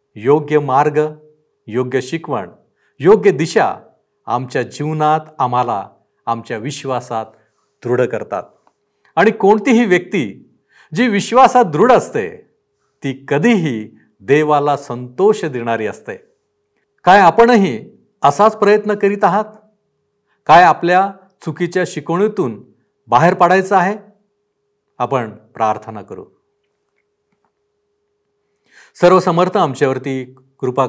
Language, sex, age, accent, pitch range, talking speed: Marathi, male, 50-69, native, 135-210 Hz, 85 wpm